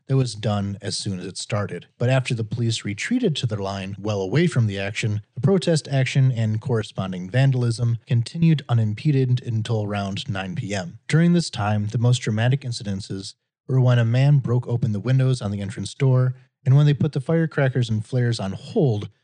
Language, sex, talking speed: English, male, 190 wpm